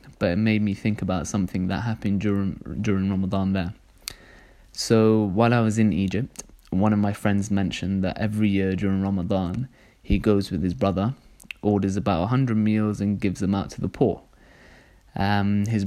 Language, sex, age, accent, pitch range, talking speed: English, male, 20-39, British, 100-110 Hz, 180 wpm